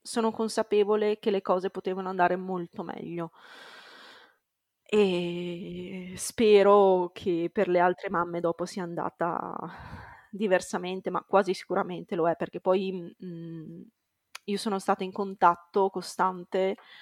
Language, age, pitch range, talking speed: Italian, 20-39, 175-200 Hz, 115 wpm